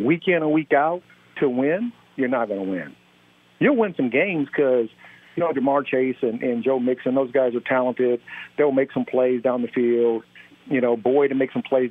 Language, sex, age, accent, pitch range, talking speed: English, male, 50-69, American, 120-190 Hz, 215 wpm